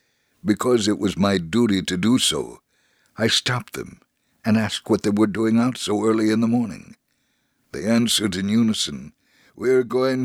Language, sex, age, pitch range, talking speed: English, male, 60-79, 100-120 Hz, 175 wpm